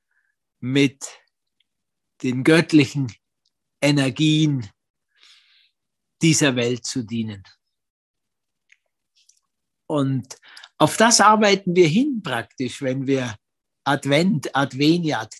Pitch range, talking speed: 125-165 Hz, 75 wpm